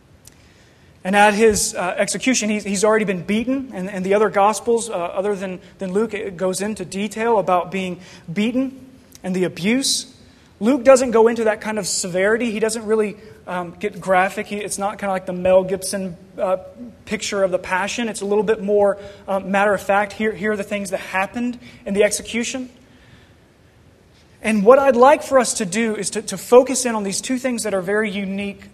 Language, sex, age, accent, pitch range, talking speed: English, male, 30-49, American, 190-230 Hz, 175 wpm